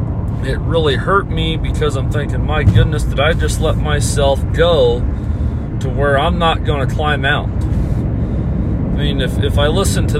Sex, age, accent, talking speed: male, 40-59, American, 175 wpm